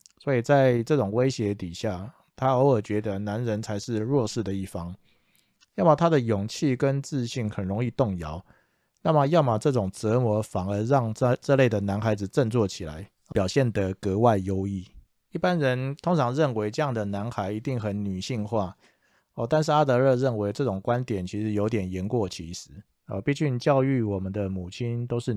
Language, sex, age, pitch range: Chinese, male, 20-39, 100-130 Hz